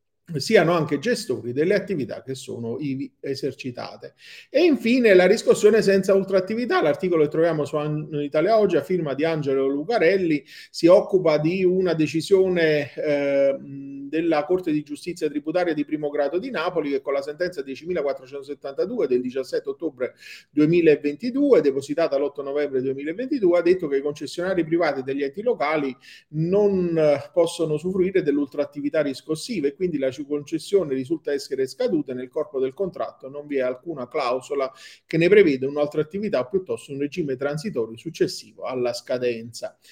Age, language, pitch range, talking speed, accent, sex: 40-59, Italian, 135-180 Hz, 145 wpm, native, male